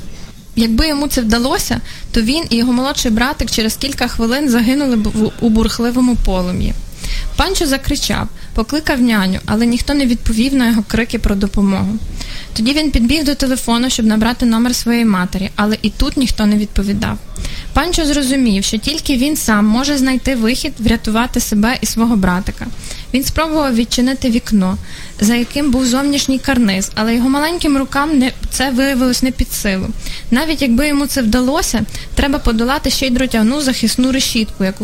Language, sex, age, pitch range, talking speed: Ukrainian, female, 20-39, 220-270 Hz, 160 wpm